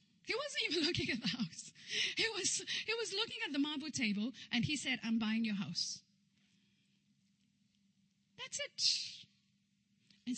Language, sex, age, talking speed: English, female, 30-49, 150 wpm